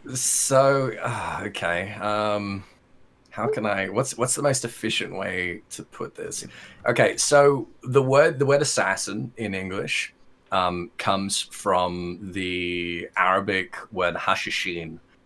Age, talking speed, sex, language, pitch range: 20-39, 120 wpm, male, English, 85-105 Hz